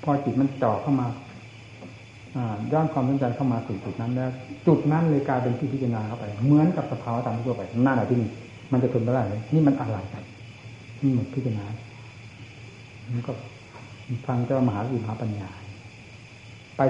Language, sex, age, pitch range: Thai, male, 60-79, 115-140 Hz